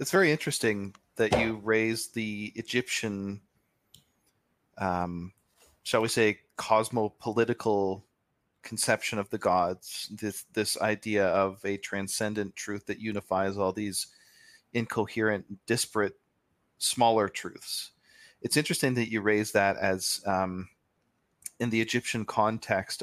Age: 30-49